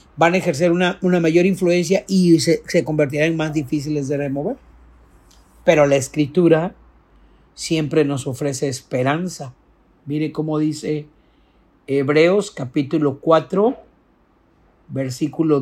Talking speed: 115 wpm